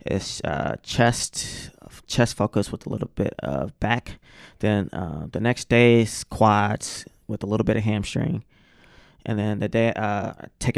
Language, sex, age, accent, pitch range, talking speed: English, male, 20-39, American, 105-120 Hz, 165 wpm